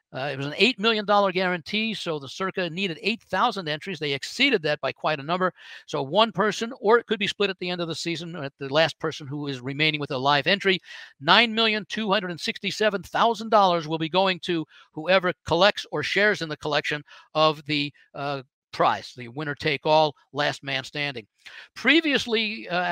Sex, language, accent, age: male, English, American, 60-79